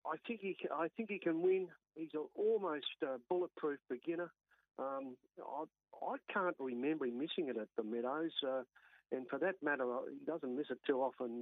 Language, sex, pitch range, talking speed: English, male, 125-160 Hz, 195 wpm